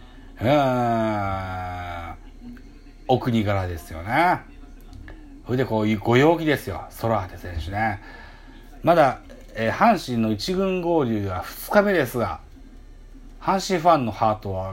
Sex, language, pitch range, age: male, Japanese, 100-160 Hz, 40-59